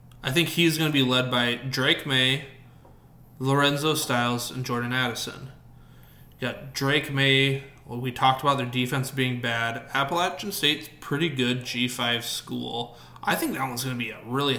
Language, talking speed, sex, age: English, 175 wpm, male, 20-39